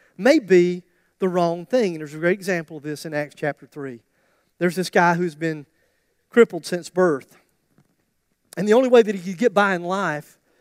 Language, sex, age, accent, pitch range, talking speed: English, male, 40-59, American, 160-220 Hz, 200 wpm